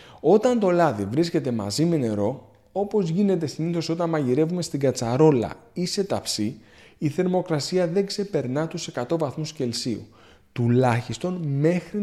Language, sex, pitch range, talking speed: Greek, male, 120-175 Hz, 135 wpm